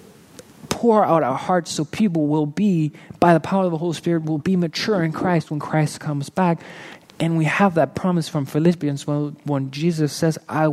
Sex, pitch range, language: male, 130-170 Hz, English